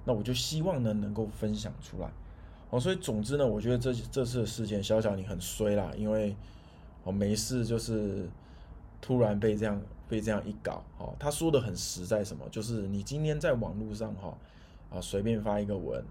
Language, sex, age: Chinese, male, 20-39